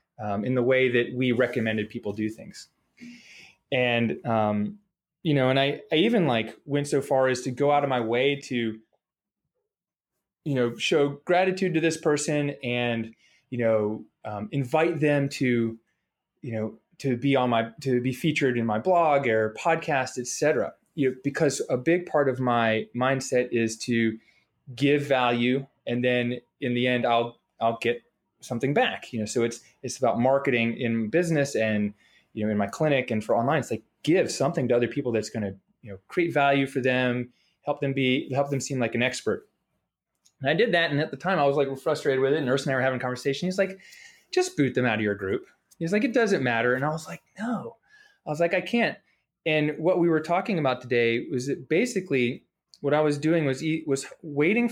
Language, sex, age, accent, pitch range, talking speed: English, male, 20-39, American, 120-155 Hz, 205 wpm